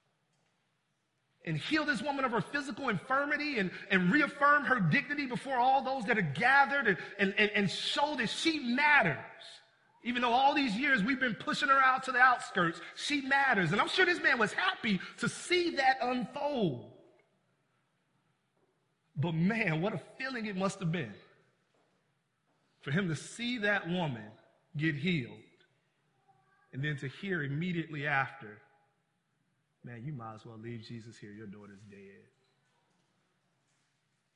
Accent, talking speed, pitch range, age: American, 150 wpm, 145-220 Hz, 30-49